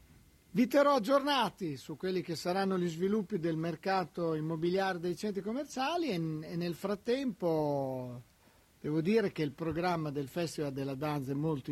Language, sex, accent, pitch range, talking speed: Italian, male, native, 150-210 Hz, 150 wpm